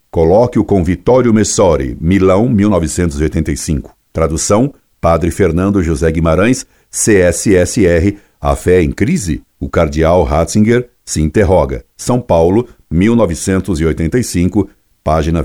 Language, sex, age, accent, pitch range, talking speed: Portuguese, male, 60-79, Brazilian, 80-110 Hz, 95 wpm